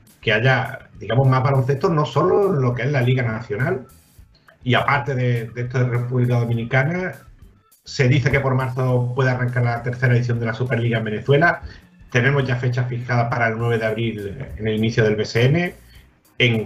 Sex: male